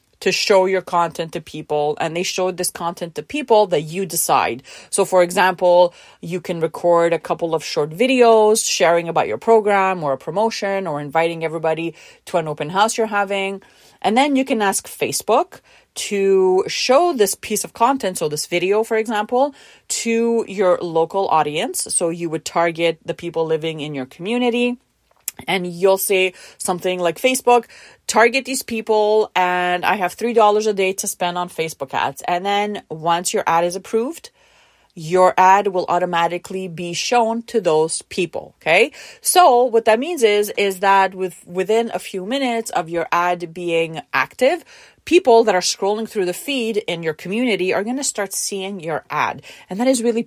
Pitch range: 170-225 Hz